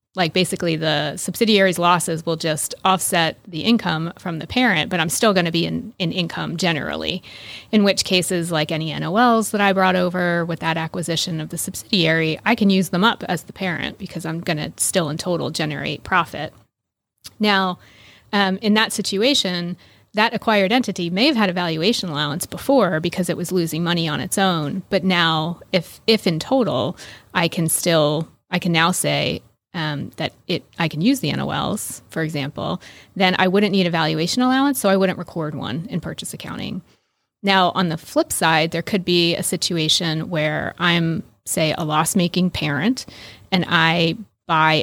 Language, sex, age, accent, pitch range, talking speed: English, female, 30-49, American, 160-195 Hz, 180 wpm